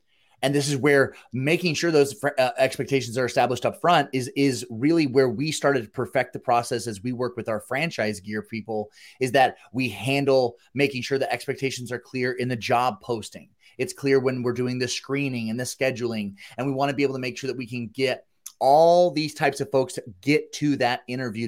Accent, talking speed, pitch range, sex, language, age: American, 220 wpm, 115-135 Hz, male, English, 30-49